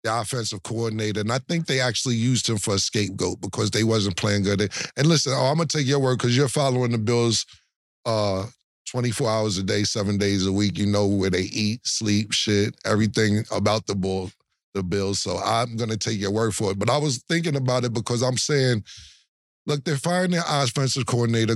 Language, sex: English, male